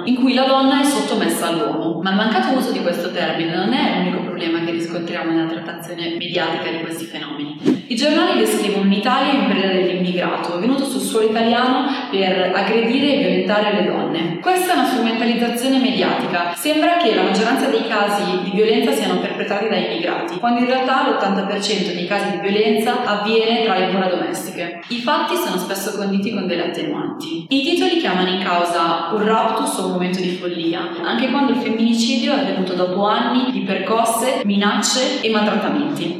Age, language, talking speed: 20-39, Italian, 175 wpm